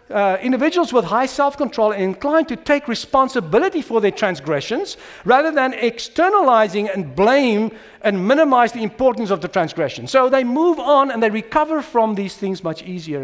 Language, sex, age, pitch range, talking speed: English, male, 50-69, 185-265 Hz, 170 wpm